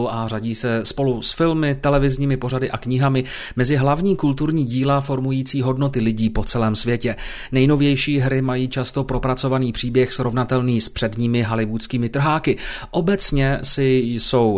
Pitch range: 115-145 Hz